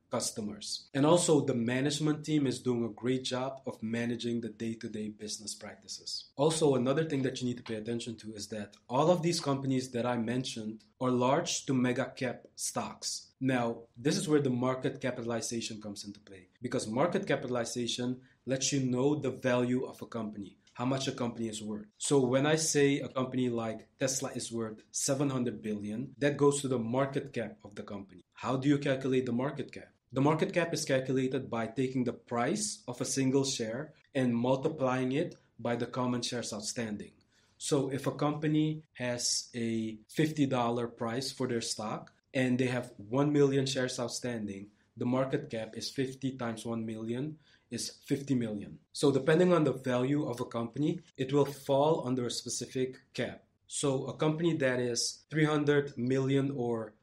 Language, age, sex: English, 20-39, male